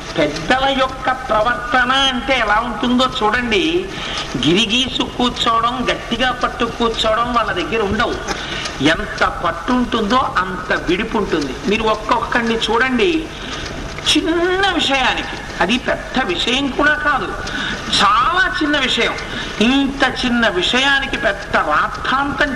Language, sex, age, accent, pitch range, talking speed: Telugu, male, 50-69, native, 230-270 Hz, 100 wpm